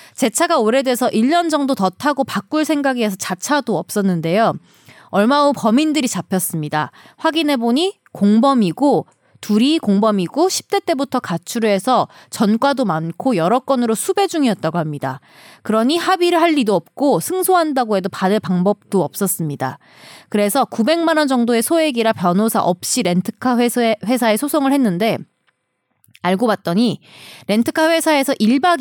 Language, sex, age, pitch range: Korean, female, 20-39, 195-295 Hz